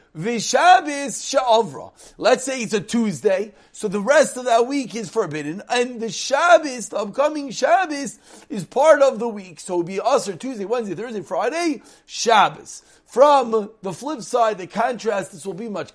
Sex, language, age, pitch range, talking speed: male, English, 40-59, 205-270 Hz, 170 wpm